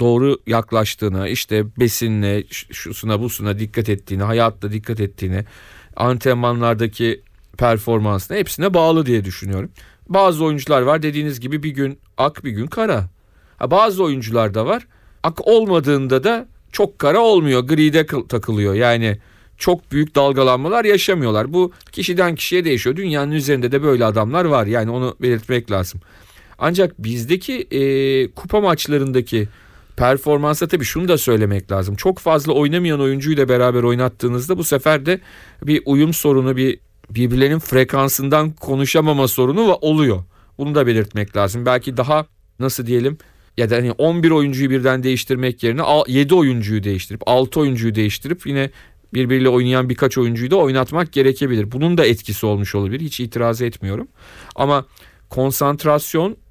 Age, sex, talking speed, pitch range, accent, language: 40-59, male, 135 wpm, 110-150 Hz, native, Turkish